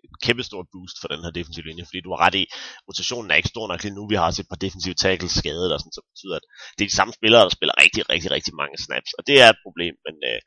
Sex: male